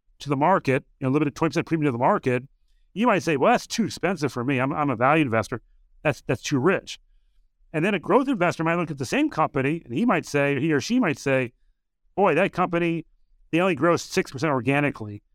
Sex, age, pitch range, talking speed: male, 40-59, 140-185 Hz, 235 wpm